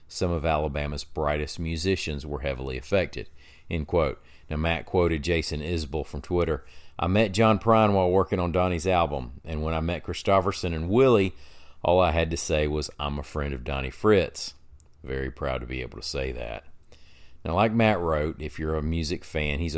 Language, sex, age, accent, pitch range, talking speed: English, male, 40-59, American, 70-90 Hz, 190 wpm